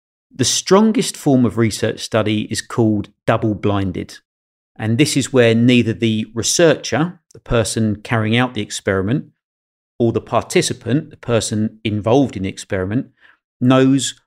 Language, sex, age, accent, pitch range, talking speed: English, male, 40-59, British, 105-125 Hz, 135 wpm